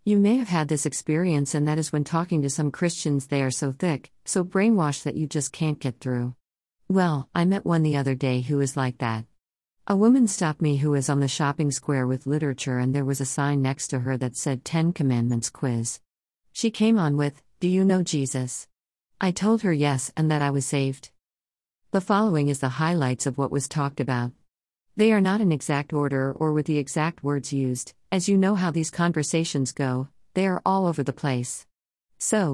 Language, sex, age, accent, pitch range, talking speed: English, female, 50-69, American, 130-165 Hz, 210 wpm